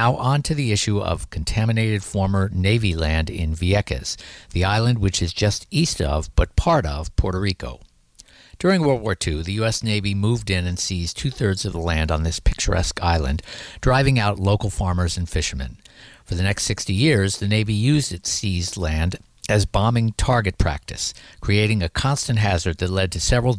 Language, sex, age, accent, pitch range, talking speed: English, male, 50-69, American, 85-105 Hz, 185 wpm